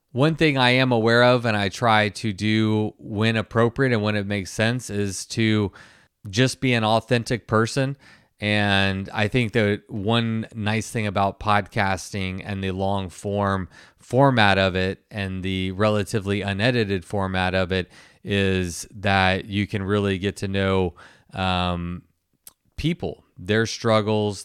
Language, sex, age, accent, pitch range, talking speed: English, male, 20-39, American, 95-115 Hz, 145 wpm